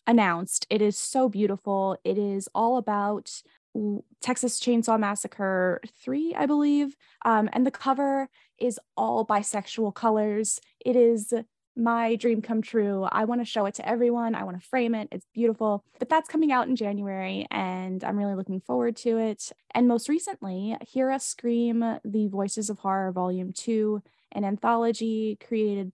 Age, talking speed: 10-29, 165 wpm